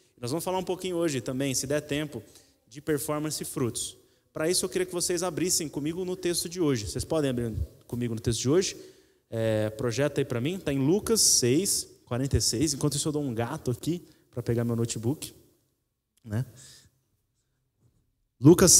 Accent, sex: Brazilian, male